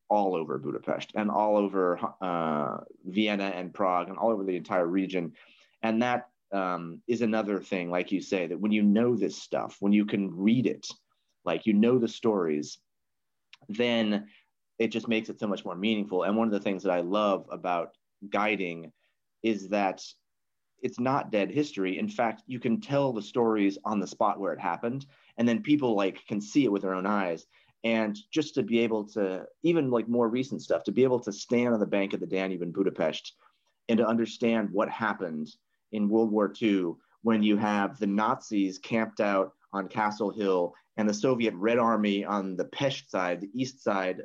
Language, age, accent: English, 30-49, American